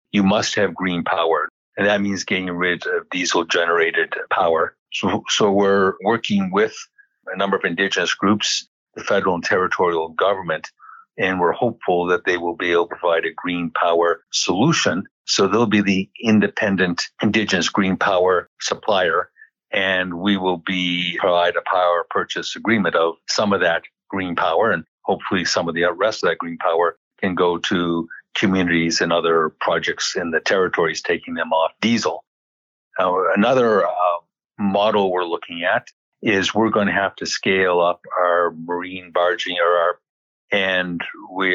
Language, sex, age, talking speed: English, male, 50-69, 160 wpm